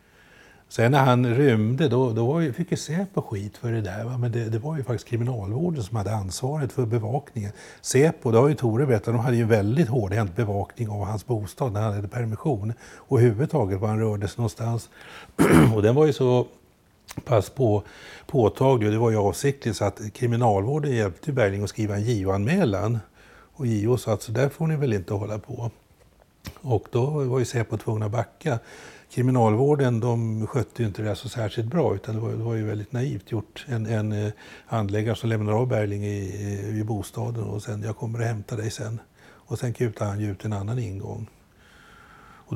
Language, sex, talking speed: Swedish, male, 200 wpm